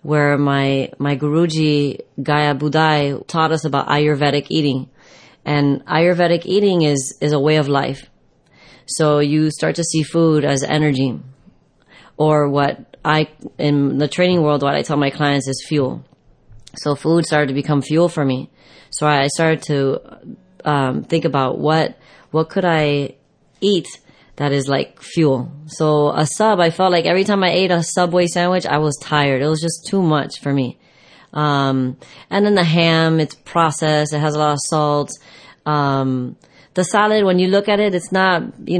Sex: female